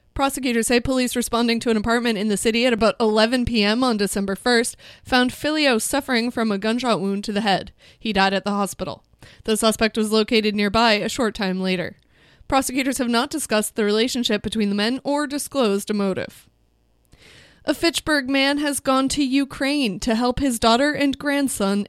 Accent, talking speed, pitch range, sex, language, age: American, 185 wpm, 210-255 Hz, female, English, 20-39